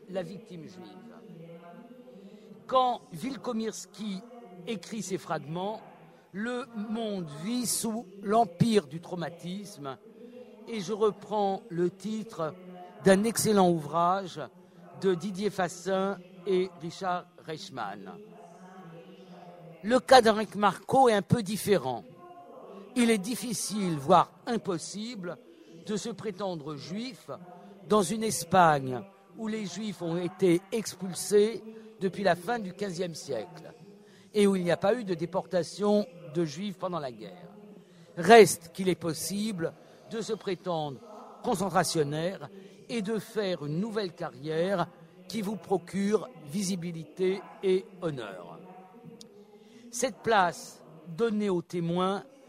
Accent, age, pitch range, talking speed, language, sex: French, 60-79, 175-215 Hz, 115 wpm, Italian, male